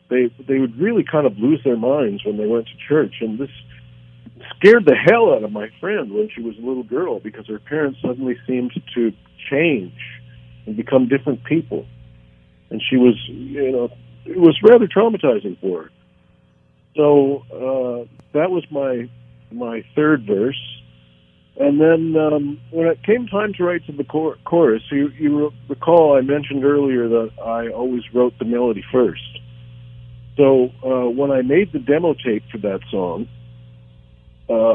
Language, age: English, 50-69